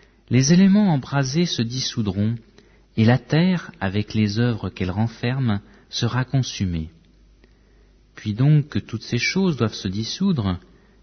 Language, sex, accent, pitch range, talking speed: French, male, French, 105-140 Hz, 130 wpm